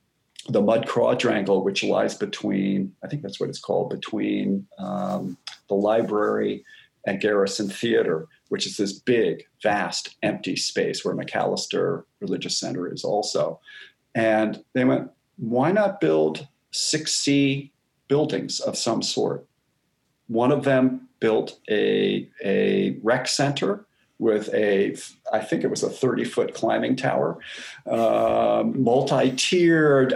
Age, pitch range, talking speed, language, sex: 40-59, 110-155 Hz, 130 wpm, English, male